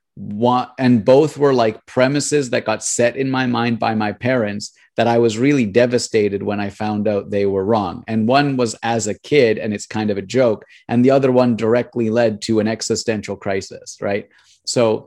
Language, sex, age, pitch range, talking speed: English, male, 30-49, 115-135 Hz, 200 wpm